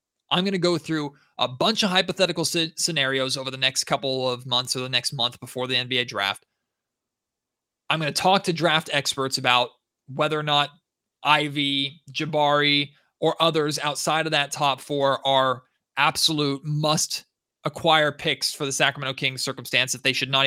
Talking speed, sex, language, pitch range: 170 wpm, male, English, 130-150 Hz